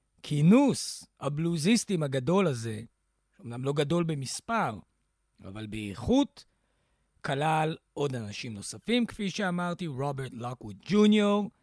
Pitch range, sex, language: 130-185 Hz, male, Hebrew